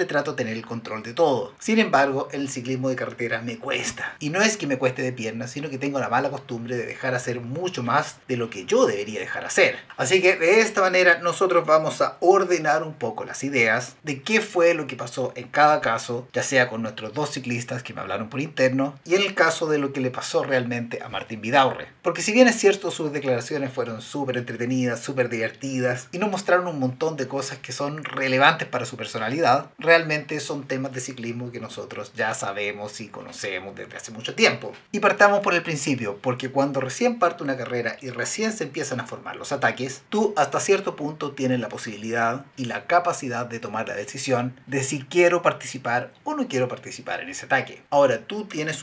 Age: 30-49